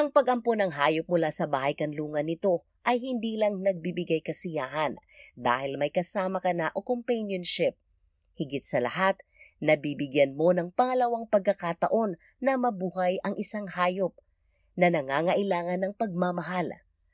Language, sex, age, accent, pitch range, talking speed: Filipino, female, 30-49, native, 150-205 Hz, 135 wpm